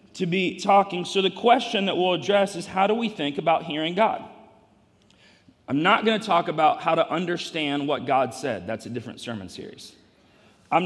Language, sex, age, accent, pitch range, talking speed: English, male, 40-59, American, 145-200 Hz, 195 wpm